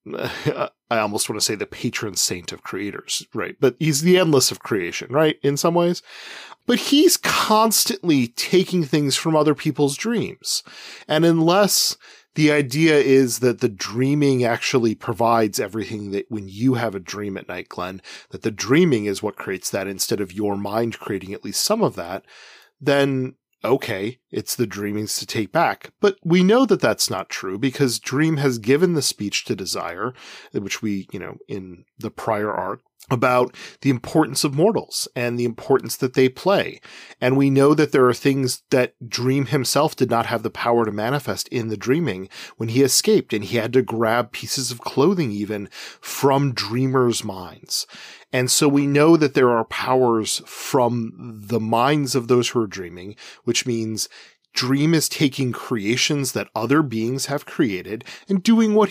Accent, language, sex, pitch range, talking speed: American, English, male, 115-150 Hz, 175 wpm